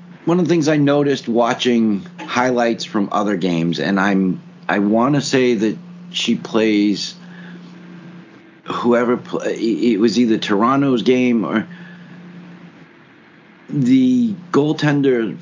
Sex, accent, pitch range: male, American, 110-175 Hz